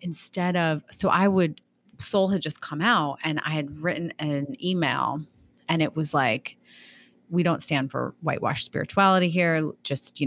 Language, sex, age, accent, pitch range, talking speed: English, female, 30-49, American, 145-175 Hz, 170 wpm